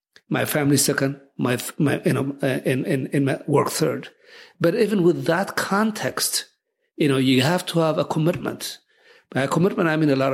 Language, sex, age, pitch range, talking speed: English, male, 50-69, 140-175 Hz, 190 wpm